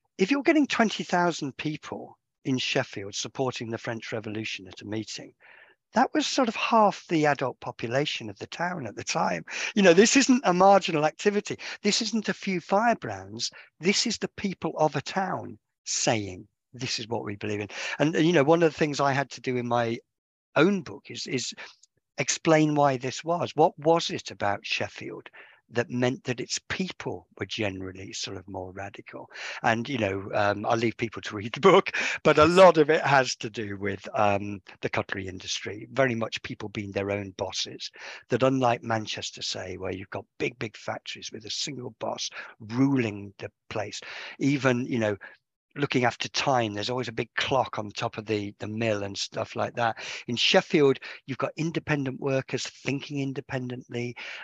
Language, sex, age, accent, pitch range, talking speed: English, male, 50-69, British, 105-150 Hz, 185 wpm